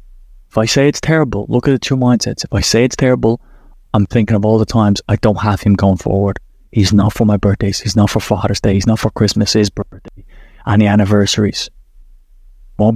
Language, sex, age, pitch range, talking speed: English, male, 20-39, 100-115 Hz, 215 wpm